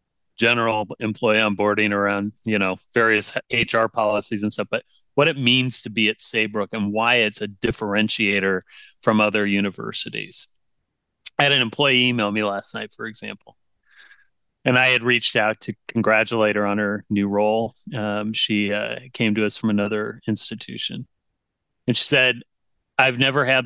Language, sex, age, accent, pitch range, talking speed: English, male, 30-49, American, 105-125 Hz, 160 wpm